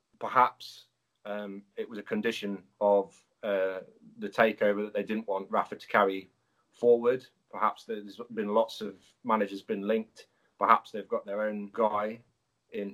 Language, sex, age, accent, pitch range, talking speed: English, male, 30-49, British, 105-125 Hz, 160 wpm